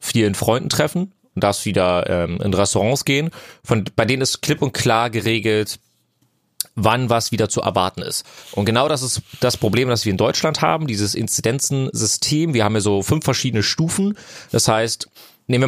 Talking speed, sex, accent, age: 180 wpm, male, German, 30-49